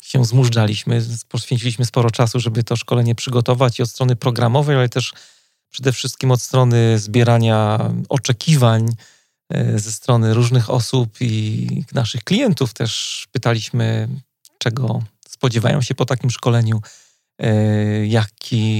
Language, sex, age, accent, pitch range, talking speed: Polish, male, 40-59, native, 115-130 Hz, 120 wpm